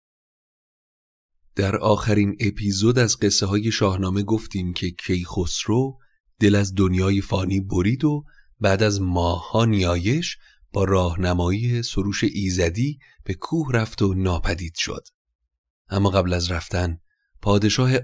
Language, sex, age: Persian, male, 30-49